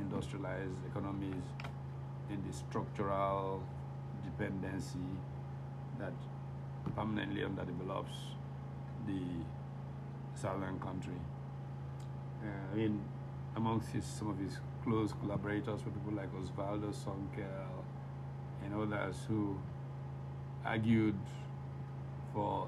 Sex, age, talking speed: male, 60-79, 85 wpm